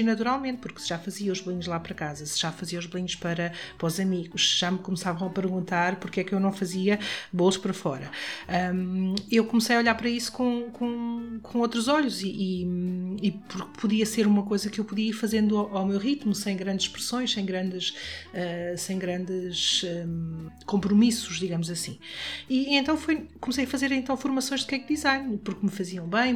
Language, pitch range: Portuguese, 185-220 Hz